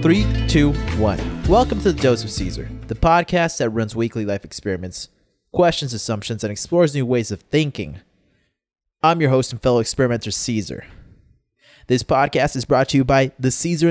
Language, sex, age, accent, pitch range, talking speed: English, male, 20-39, American, 110-145 Hz, 175 wpm